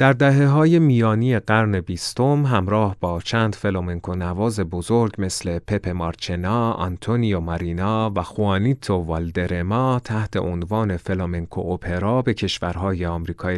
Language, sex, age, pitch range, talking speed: Persian, male, 30-49, 85-110 Hz, 120 wpm